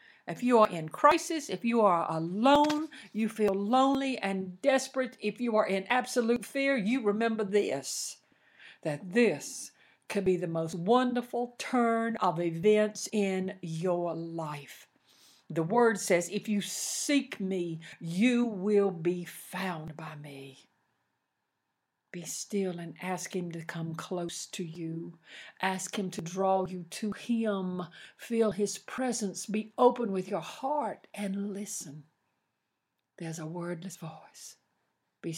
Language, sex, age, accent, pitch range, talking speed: English, female, 60-79, American, 165-215 Hz, 135 wpm